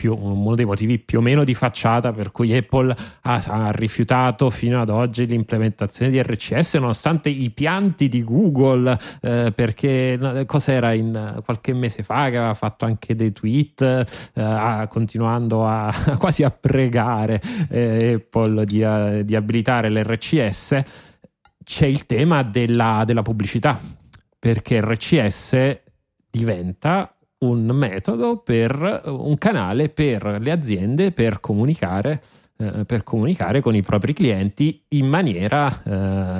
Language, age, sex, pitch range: Italian, 30-49, male, 110-130 Hz